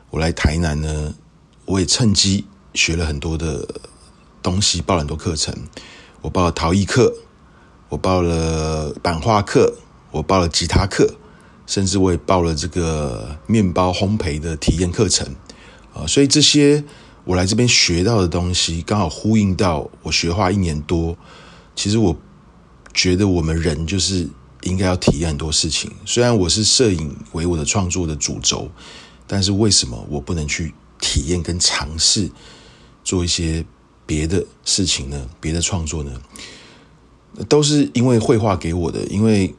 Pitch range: 80-100 Hz